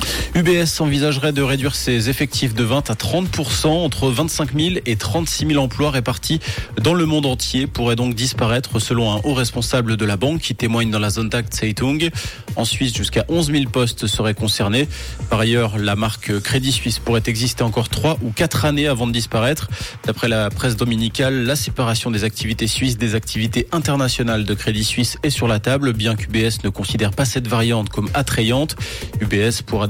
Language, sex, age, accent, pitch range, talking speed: French, male, 20-39, French, 110-135 Hz, 185 wpm